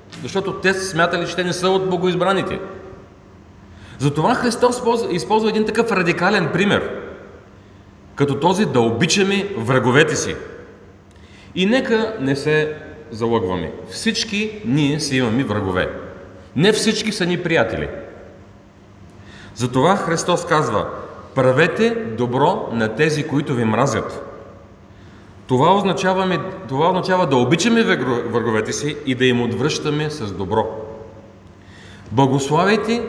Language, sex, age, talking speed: Bulgarian, male, 40-59, 115 wpm